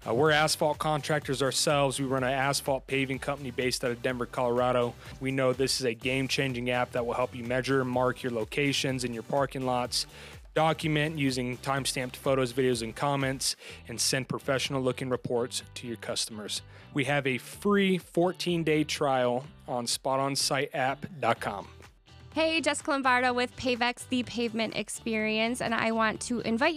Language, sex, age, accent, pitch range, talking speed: English, male, 20-39, American, 135-220 Hz, 160 wpm